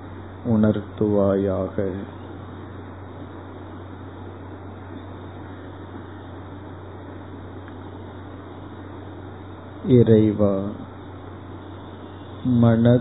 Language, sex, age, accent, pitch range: Tamil, male, 50-69, native, 95-105 Hz